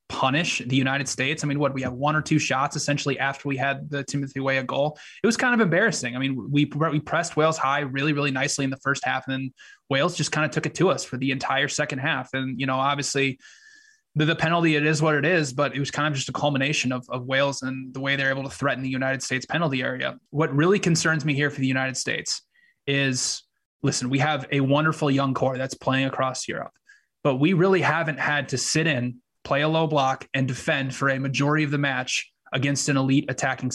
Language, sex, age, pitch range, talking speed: English, male, 20-39, 135-150 Hz, 240 wpm